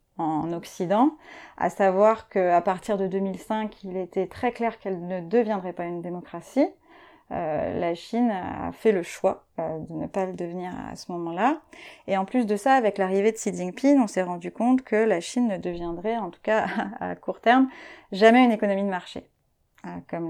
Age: 30-49